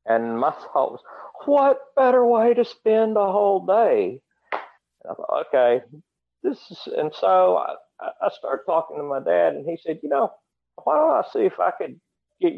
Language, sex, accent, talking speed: English, male, American, 190 wpm